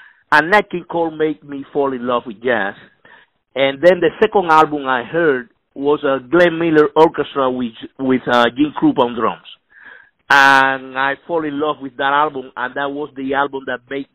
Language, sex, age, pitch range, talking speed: English, male, 50-69, 135-170 Hz, 190 wpm